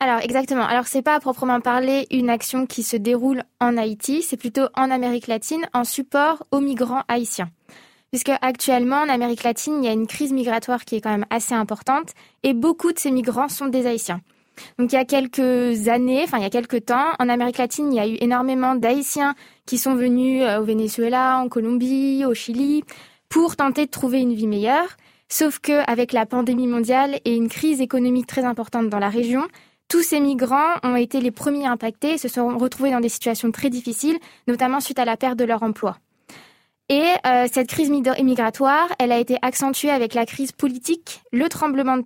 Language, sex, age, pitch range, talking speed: French, female, 20-39, 235-275 Hz, 205 wpm